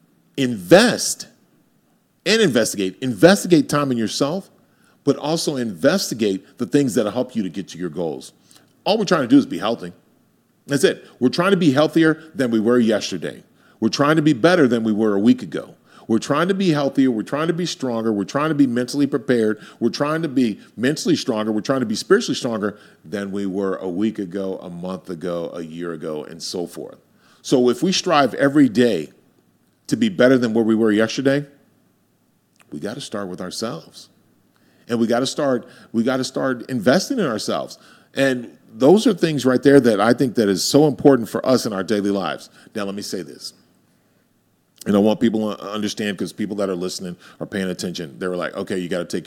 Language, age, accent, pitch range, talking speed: English, 40-59, American, 100-140 Hz, 205 wpm